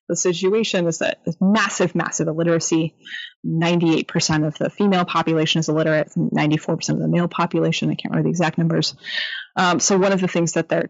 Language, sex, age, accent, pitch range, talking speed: English, female, 20-39, American, 165-210 Hz, 185 wpm